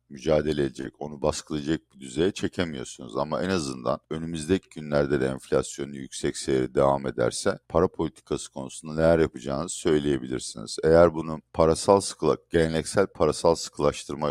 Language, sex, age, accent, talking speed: Turkish, male, 50-69, native, 135 wpm